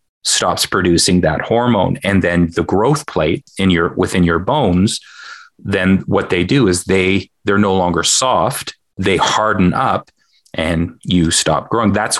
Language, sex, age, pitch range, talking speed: English, male, 30-49, 90-105 Hz, 155 wpm